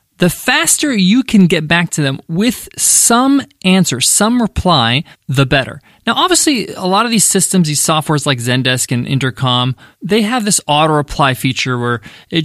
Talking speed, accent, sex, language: 170 wpm, American, male, English